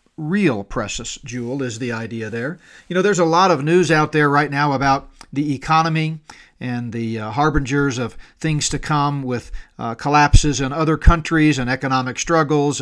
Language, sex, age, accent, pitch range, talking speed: English, male, 40-59, American, 125-150 Hz, 180 wpm